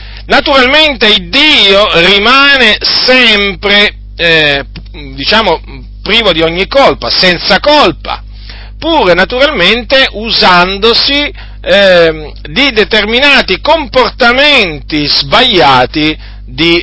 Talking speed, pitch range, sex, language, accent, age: 80 wpm, 140-225 Hz, male, Italian, native, 40-59